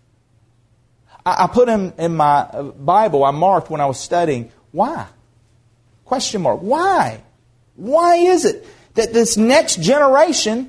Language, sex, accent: English, male, American